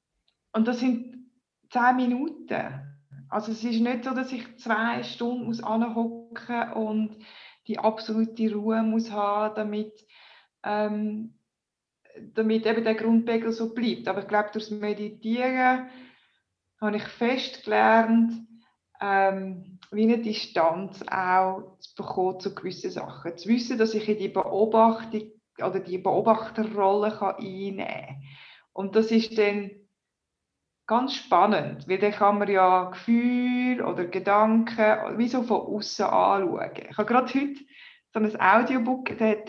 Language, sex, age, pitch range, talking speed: English, female, 20-39, 205-235 Hz, 140 wpm